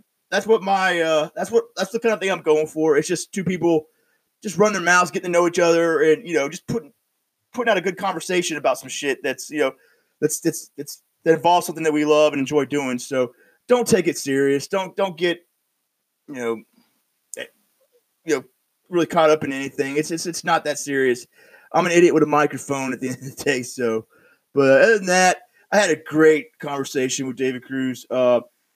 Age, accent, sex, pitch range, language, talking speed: 20-39, American, male, 145-180 Hz, English, 215 wpm